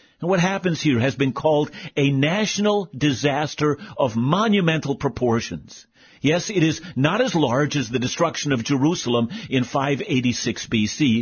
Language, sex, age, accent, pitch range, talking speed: English, male, 50-69, American, 120-170 Hz, 140 wpm